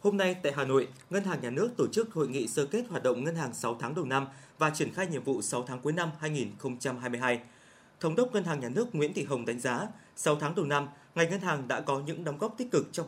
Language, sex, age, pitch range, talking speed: Vietnamese, male, 20-39, 135-180 Hz, 290 wpm